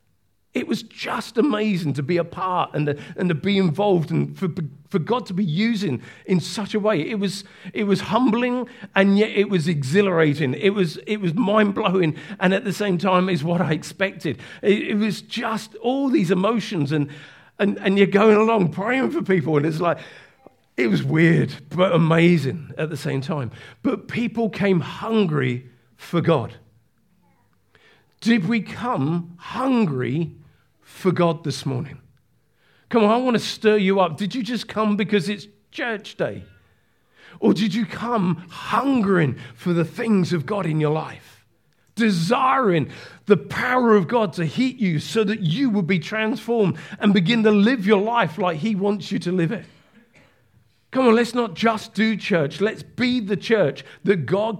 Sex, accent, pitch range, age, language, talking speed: male, British, 160-215 Hz, 40-59, English, 175 wpm